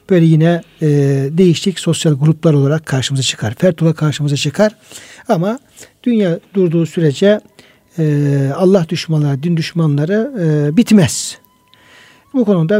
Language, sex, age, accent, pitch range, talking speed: Turkish, male, 60-79, native, 150-185 Hz, 105 wpm